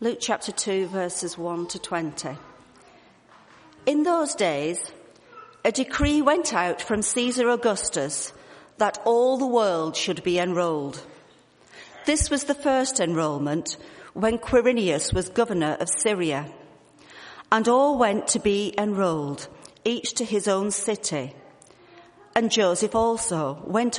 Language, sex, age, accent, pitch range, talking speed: English, female, 50-69, British, 165-230 Hz, 125 wpm